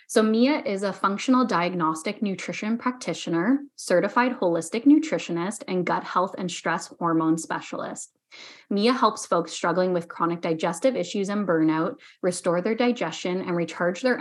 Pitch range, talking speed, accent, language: 175-240 Hz, 145 wpm, American, English